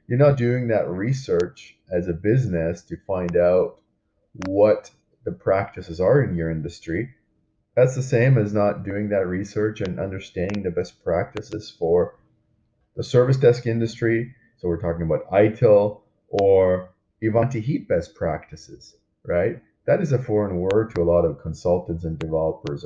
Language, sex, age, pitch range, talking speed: English, male, 30-49, 90-115 Hz, 155 wpm